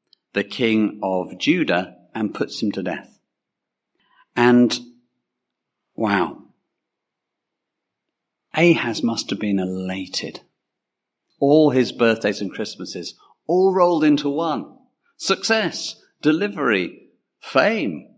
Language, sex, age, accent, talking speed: English, male, 50-69, British, 90 wpm